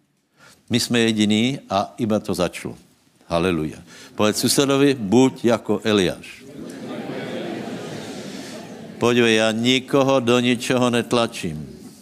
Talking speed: 95 wpm